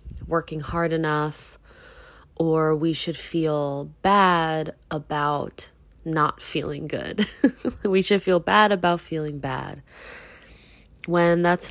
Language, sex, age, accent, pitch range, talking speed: English, female, 20-39, American, 150-175 Hz, 110 wpm